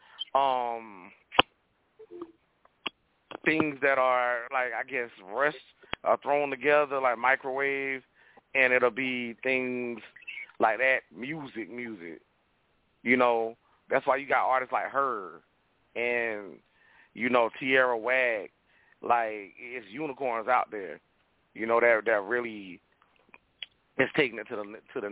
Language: English